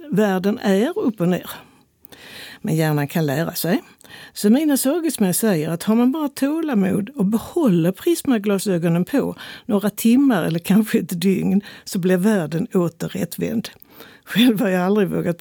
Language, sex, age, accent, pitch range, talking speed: Swedish, female, 60-79, native, 175-240 Hz, 150 wpm